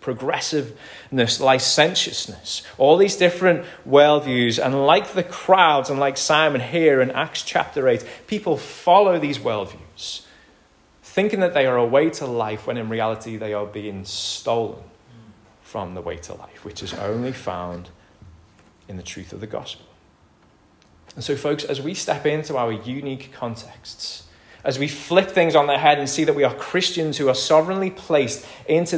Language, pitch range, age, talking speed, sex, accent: English, 105-150 Hz, 20-39, 165 wpm, male, British